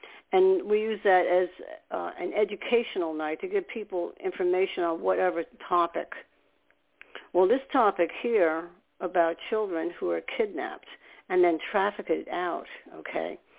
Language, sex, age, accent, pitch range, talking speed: English, female, 60-79, American, 175-235 Hz, 130 wpm